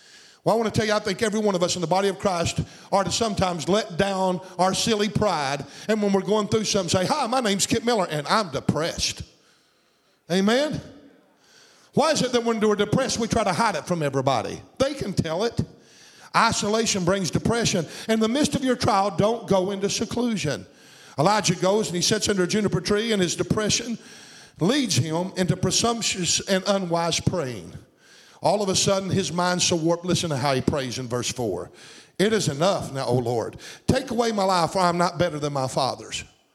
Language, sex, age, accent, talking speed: English, male, 50-69, American, 205 wpm